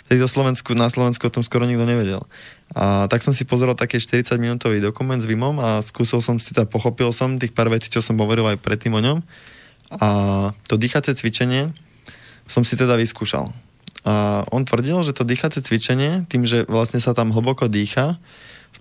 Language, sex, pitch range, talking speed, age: Slovak, male, 110-130 Hz, 190 wpm, 20-39